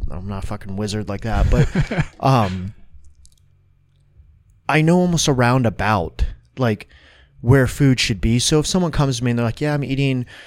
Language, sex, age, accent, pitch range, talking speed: English, male, 30-49, American, 100-130 Hz, 180 wpm